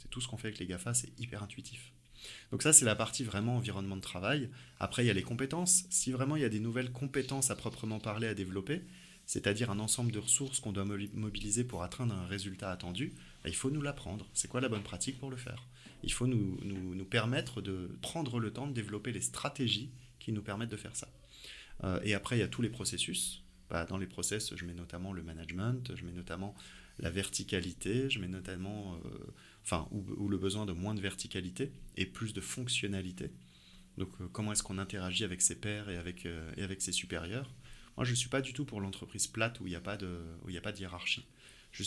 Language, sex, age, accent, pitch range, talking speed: French, male, 30-49, French, 95-125 Hz, 220 wpm